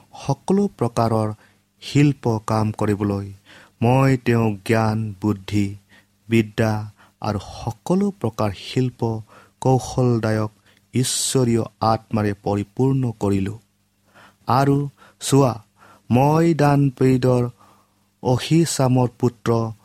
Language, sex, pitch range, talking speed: English, male, 100-125 Hz, 80 wpm